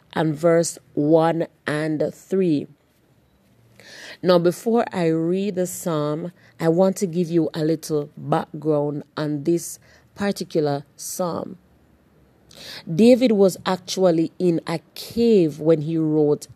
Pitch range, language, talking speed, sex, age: 160-195 Hz, English, 115 wpm, female, 40-59